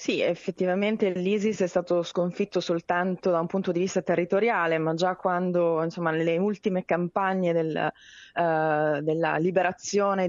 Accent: native